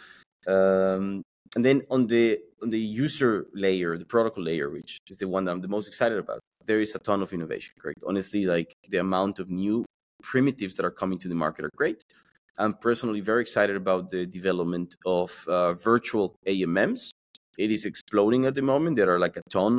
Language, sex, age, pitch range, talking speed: English, male, 20-39, 95-110 Hz, 200 wpm